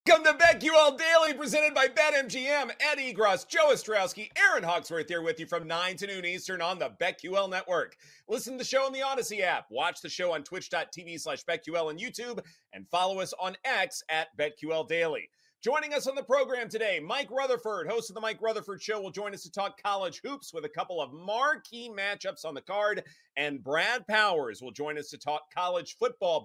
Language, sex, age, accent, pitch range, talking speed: English, male, 40-59, American, 165-255 Hz, 205 wpm